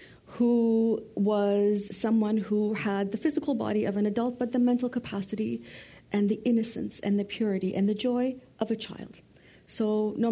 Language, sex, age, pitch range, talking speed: English, female, 50-69, 195-240 Hz, 170 wpm